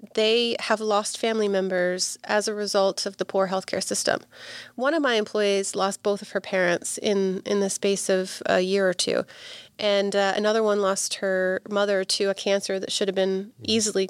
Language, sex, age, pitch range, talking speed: English, female, 30-49, 195-230 Hz, 195 wpm